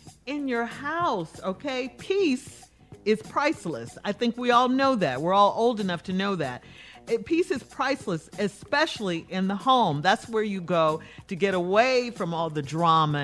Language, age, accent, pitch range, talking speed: English, 40-59, American, 165-235 Hz, 170 wpm